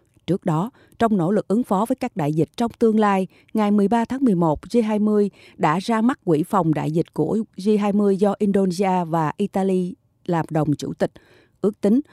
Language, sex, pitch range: Japanese, female, 155-210 Hz